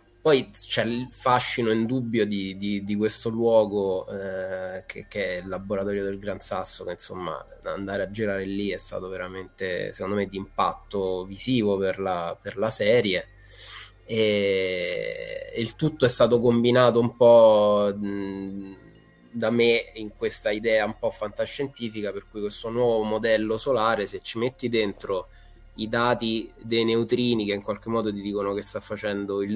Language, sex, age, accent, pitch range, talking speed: Italian, male, 20-39, native, 95-115 Hz, 160 wpm